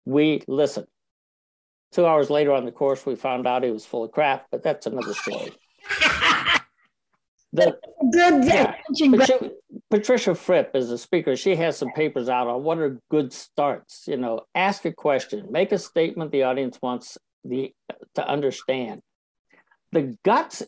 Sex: male